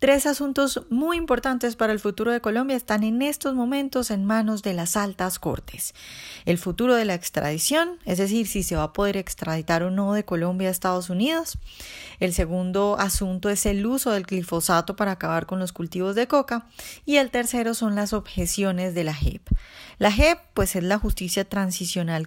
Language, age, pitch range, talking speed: Spanish, 10-29, 180-225 Hz, 190 wpm